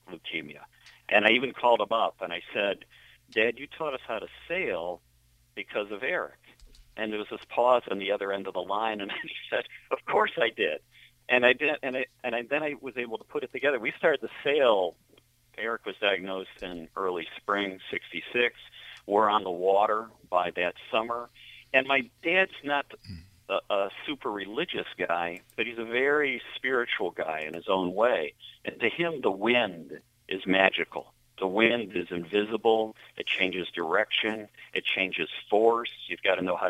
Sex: male